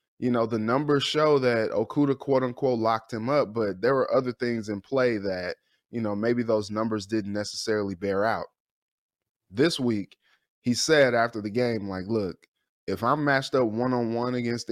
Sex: male